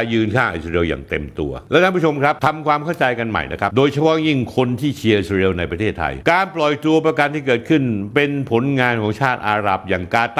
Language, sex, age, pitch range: Thai, male, 60-79, 115-155 Hz